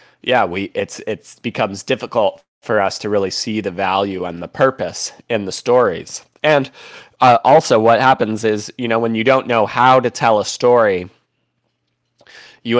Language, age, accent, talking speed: English, 20-39, American, 175 wpm